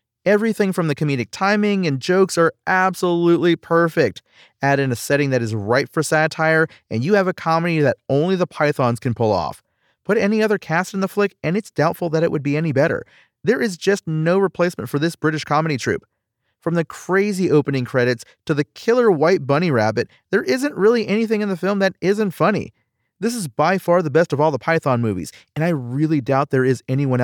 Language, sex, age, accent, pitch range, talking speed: English, male, 30-49, American, 135-195 Hz, 210 wpm